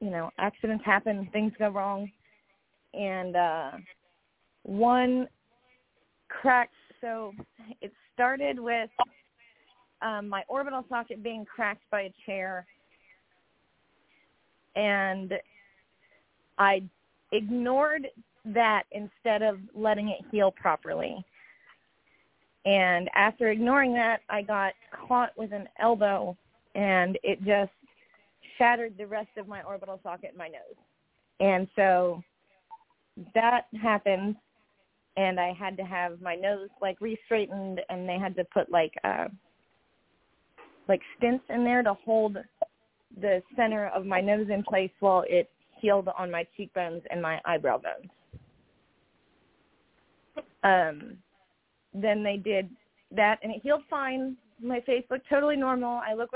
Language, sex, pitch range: English, female, 195-240 Hz